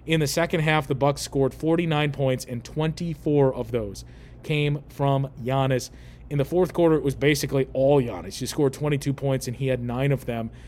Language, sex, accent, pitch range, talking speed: English, male, American, 125-155 Hz, 195 wpm